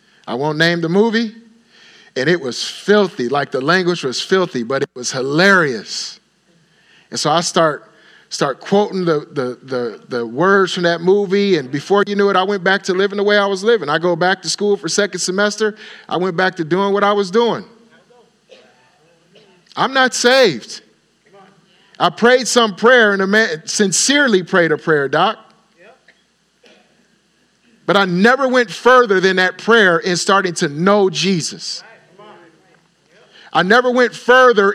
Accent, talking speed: American, 165 wpm